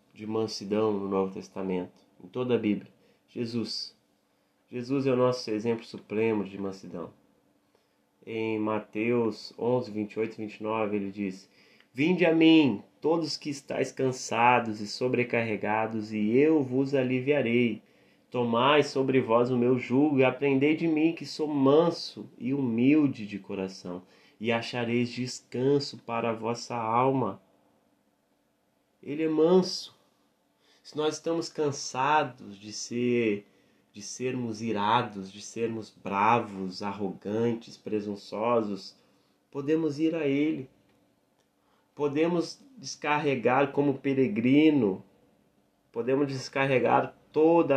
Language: Portuguese